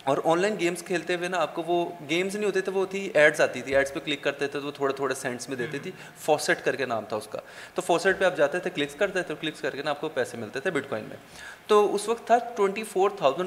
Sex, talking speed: male, 295 wpm